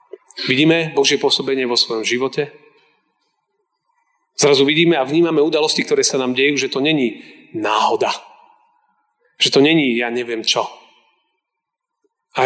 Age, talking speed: 30-49, 125 wpm